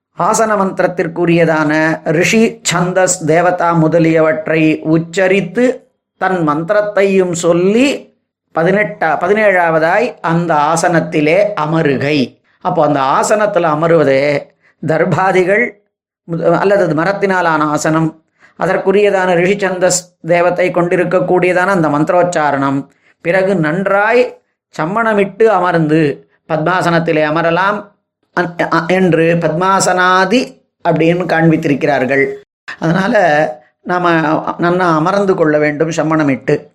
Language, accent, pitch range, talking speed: Tamil, native, 160-195 Hz, 75 wpm